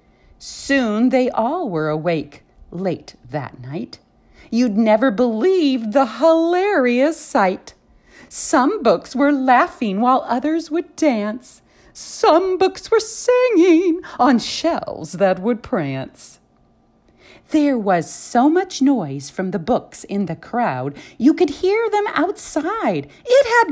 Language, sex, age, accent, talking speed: English, female, 40-59, American, 125 wpm